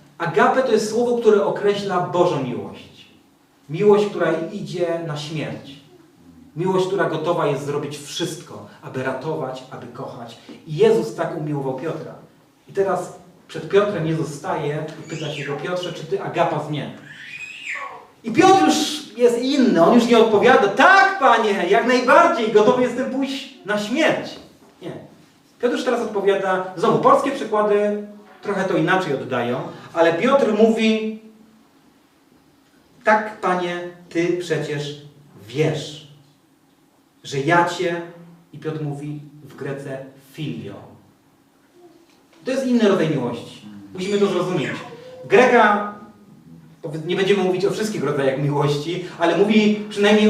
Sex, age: male, 30-49